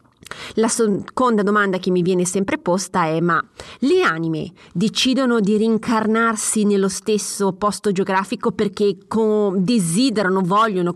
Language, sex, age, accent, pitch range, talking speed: Italian, female, 30-49, native, 170-205 Hz, 120 wpm